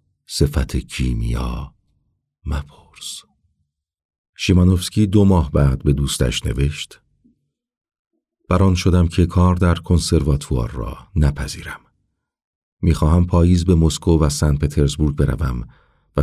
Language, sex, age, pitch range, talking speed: Persian, male, 50-69, 70-90 Hz, 100 wpm